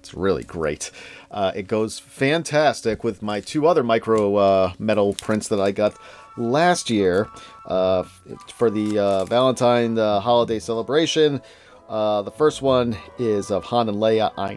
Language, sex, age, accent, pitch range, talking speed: English, male, 40-59, American, 100-125 Hz, 155 wpm